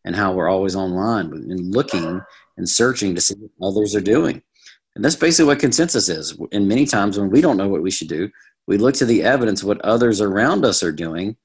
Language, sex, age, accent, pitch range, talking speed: English, male, 50-69, American, 90-115 Hz, 230 wpm